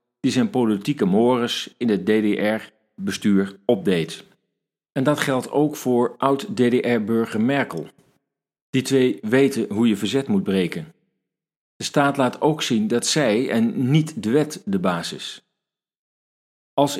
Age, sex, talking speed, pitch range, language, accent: 40-59, male, 130 wpm, 105-140 Hz, Dutch, Dutch